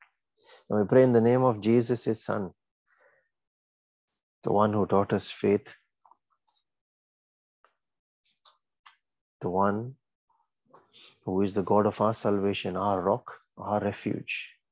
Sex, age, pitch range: male, 30-49, 100-115 Hz